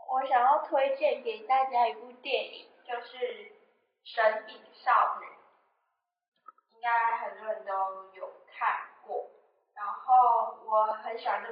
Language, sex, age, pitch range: Chinese, female, 10-29, 210-280 Hz